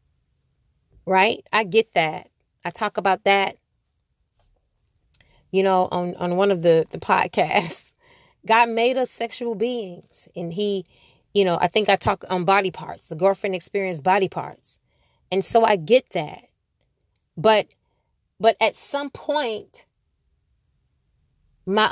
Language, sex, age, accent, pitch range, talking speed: English, female, 30-49, American, 185-245 Hz, 135 wpm